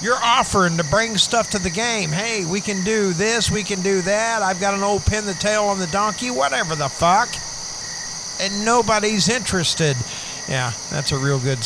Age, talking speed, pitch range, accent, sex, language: 50-69, 195 wpm, 140-215 Hz, American, male, English